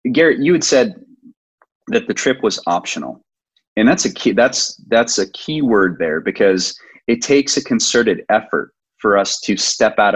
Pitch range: 95-115 Hz